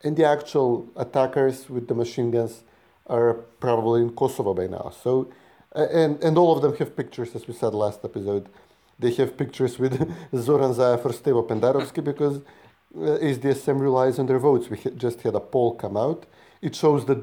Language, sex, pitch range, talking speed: English, male, 115-145 Hz, 195 wpm